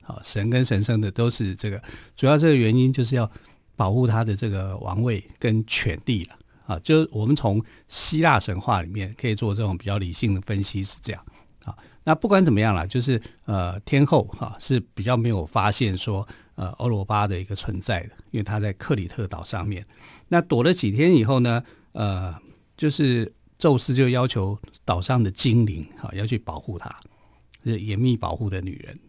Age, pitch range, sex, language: 50-69, 105-125 Hz, male, Chinese